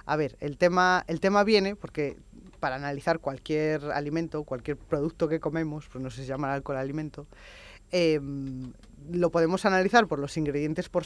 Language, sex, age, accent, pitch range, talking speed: Spanish, female, 20-39, Spanish, 135-180 Hz, 180 wpm